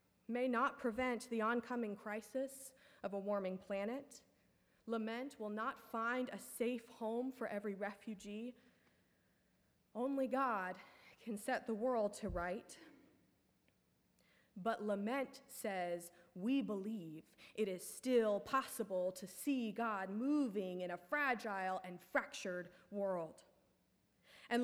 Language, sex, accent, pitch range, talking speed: English, female, American, 220-275 Hz, 115 wpm